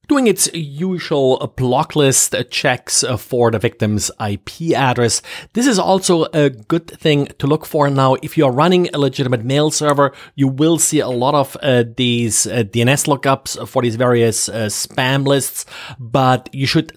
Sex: male